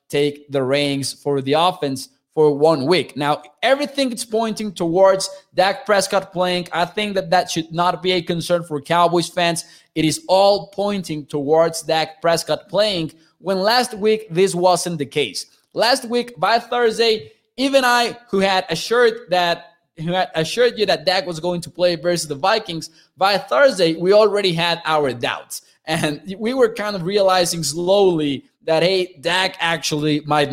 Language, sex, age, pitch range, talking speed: English, male, 20-39, 160-205 Hz, 170 wpm